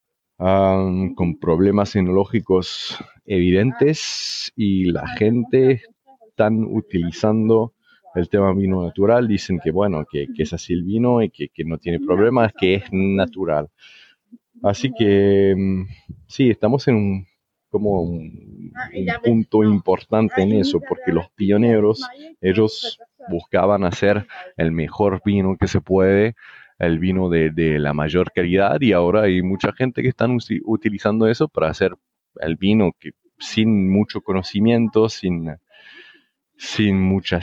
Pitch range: 90-115 Hz